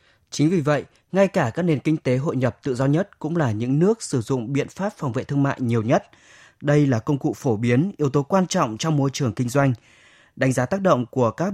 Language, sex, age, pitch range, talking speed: Vietnamese, male, 20-39, 125-160 Hz, 255 wpm